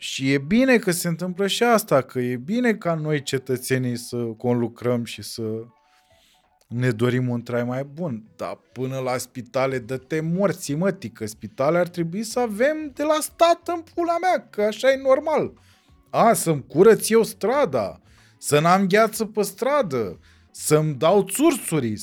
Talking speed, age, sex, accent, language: 160 wpm, 20-39, male, native, Romanian